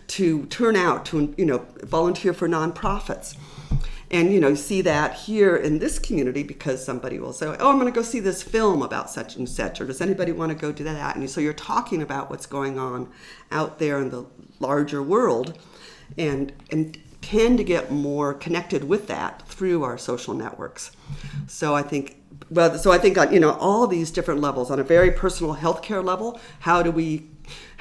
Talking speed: 200 wpm